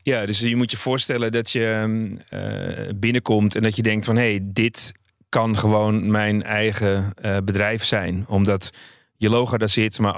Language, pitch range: Dutch, 100-110 Hz